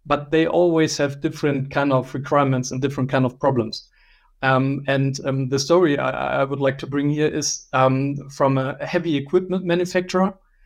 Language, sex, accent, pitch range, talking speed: English, male, German, 135-155 Hz, 180 wpm